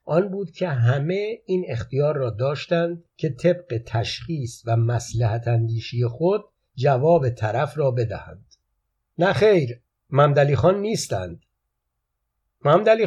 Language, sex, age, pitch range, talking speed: Persian, male, 60-79, 120-170 Hz, 115 wpm